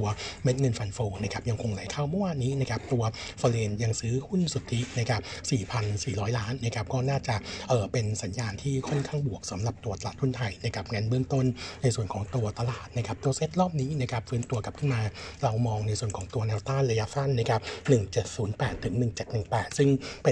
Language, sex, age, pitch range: Thai, male, 60-79, 110-135 Hz